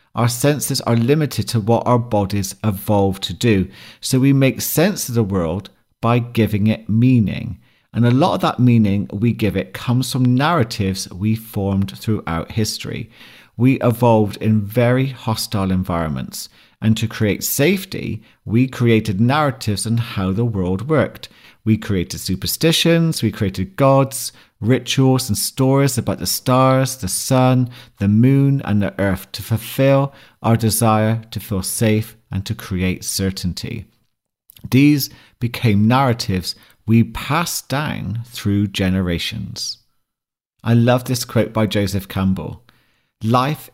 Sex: male